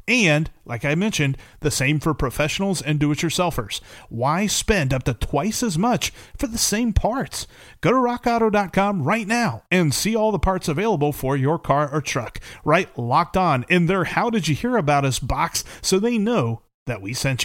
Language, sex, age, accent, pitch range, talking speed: English, male, 30-49, American, 130-175 Hz, 170 wpm